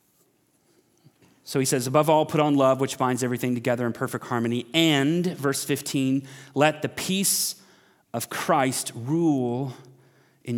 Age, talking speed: 30-49, 140 wpm